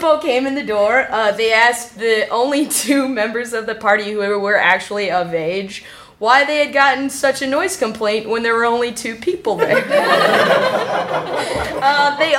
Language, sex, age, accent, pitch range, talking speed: English, female, 20-39, American, 200-270 Hz, 175 wpm